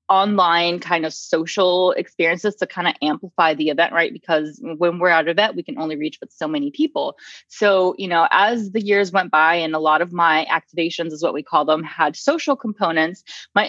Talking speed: 215 wpm